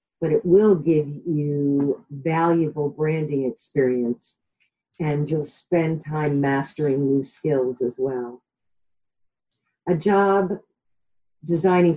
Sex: female